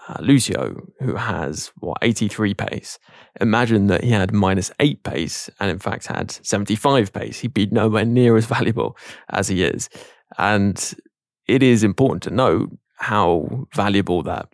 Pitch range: 90-115 Hz